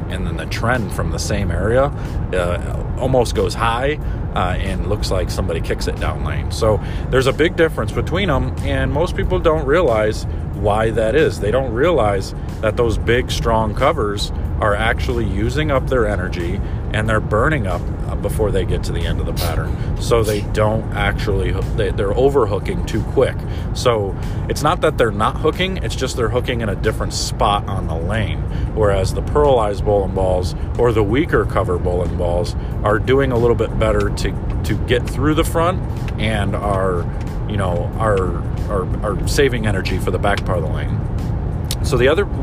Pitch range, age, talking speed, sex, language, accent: 95-115 Hz, 40-59, 185 wpm, male, English, American